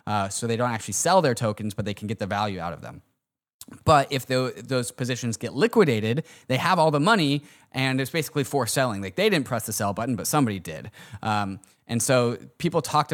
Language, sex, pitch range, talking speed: English, male, 110-140 Hz, 225 wpm